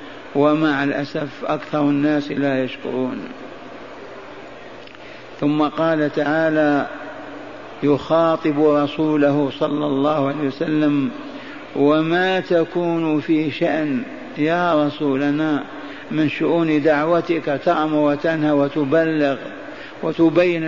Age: 50-69